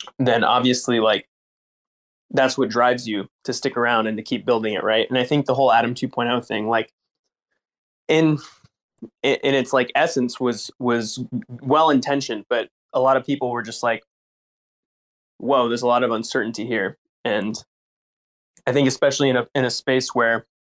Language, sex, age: English, male, 20-39